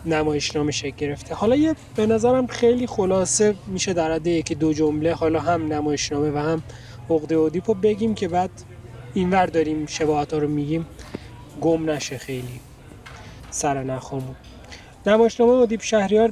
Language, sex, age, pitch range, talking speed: Persian, male, 20-39, 150-205 Hz, 145 wpm